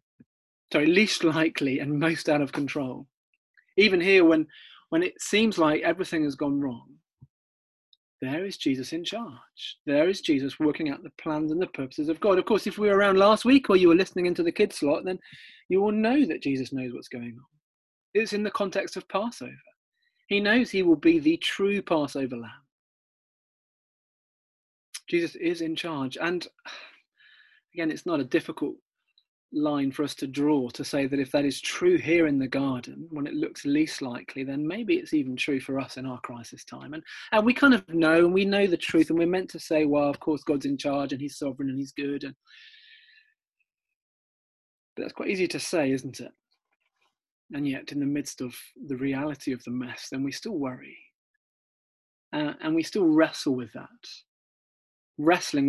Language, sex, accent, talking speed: English, male, British, 190 wpm